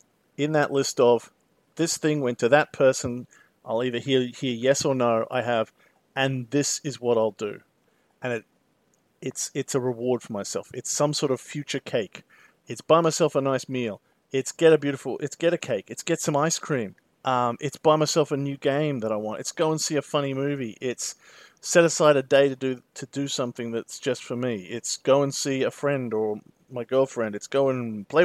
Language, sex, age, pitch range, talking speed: English, male, 40-59, 125-150 Hz, 215 wpm